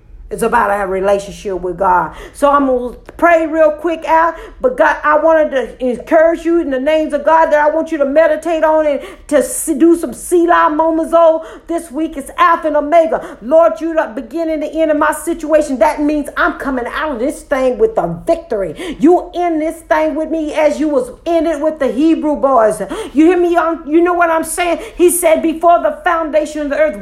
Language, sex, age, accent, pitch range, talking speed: English, female, 50-69, American, 295-330 Hz, 220 wpm